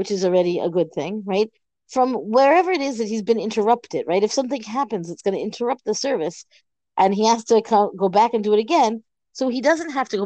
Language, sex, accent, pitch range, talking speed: English, female, American, 195-240 Hz, 240 wpm